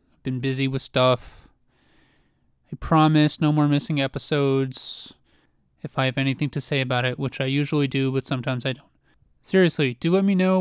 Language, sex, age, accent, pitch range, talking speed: English, male, 30-49, American, 130-160 Hz, 175 wpm